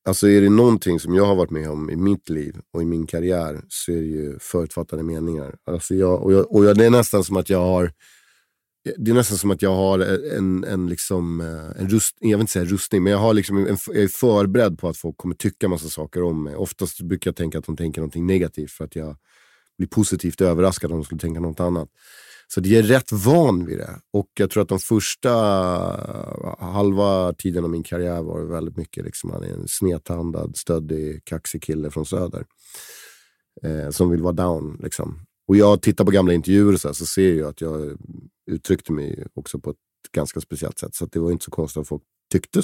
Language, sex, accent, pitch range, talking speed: Swedish, male, native, 80-100 Hz, 225 wpm